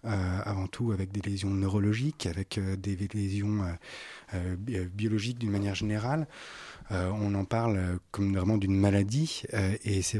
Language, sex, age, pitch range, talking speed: French, male, 30-49, 100-120 Hz, 170 wpm